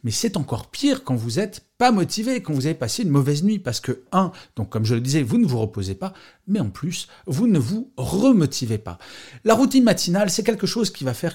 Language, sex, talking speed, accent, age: French, male, 240 wpm, French, 40-59